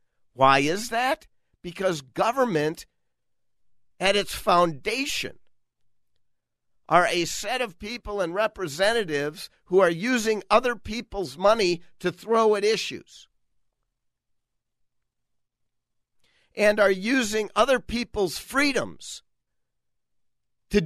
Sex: male